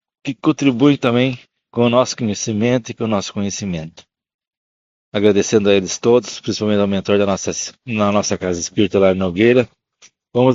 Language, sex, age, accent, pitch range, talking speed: Portuguese, male, 60-79, Brazilian, 100-125 Hz, 165 wpm